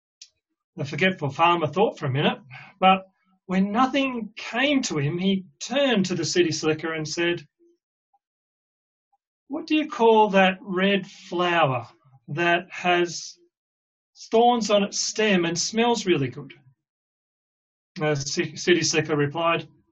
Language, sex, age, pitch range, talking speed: English, male, 40-59, 155-215 Hz, 125 wpm